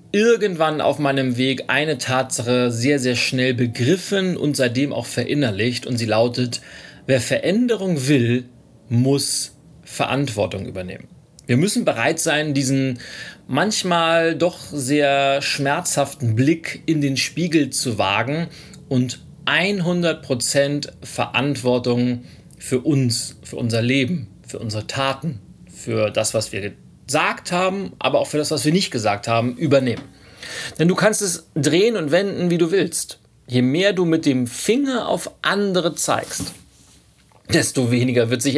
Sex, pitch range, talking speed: male, 125-165 Hz, 135 wpm